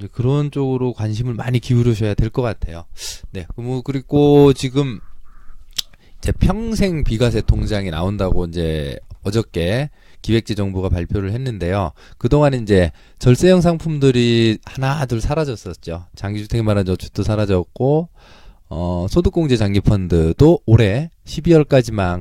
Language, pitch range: Korean, 95-135 Hz